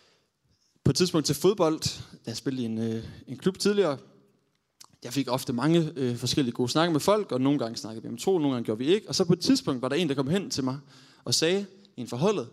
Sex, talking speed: male, 255 wpm